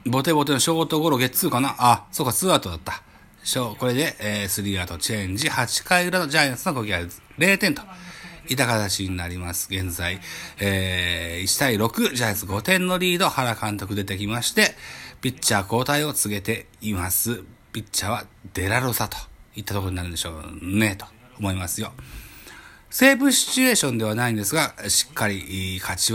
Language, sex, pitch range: Japanese, male, 95-145 Hz